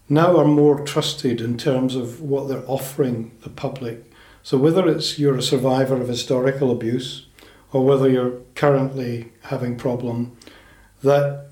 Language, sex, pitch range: English, male, 125-150 Hz